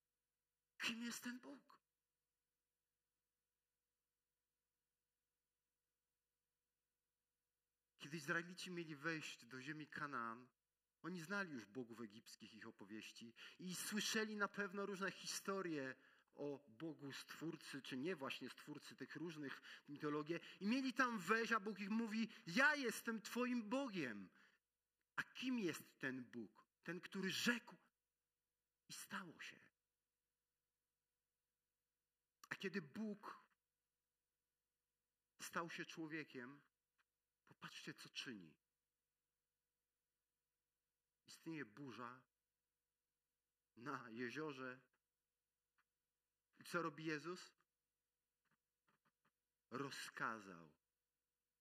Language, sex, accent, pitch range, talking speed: Polish, male, native, 145-225 Hz, 85 wpm